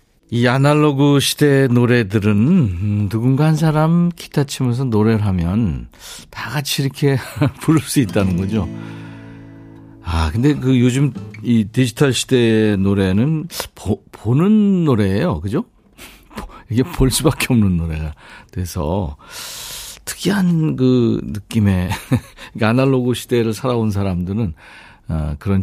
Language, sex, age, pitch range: Korean, male, 50-69, 100-140 Hz